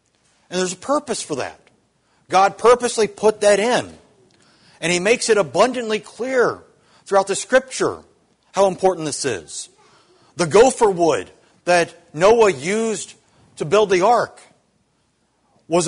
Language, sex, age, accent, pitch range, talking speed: English, male, 50-69, American, 150-200 Hz, 130 wpm